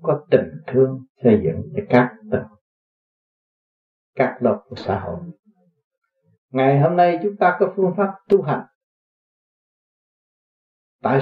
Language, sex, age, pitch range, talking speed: Vietnamese, male, 60-79, 125-170 Hz, 125 wpm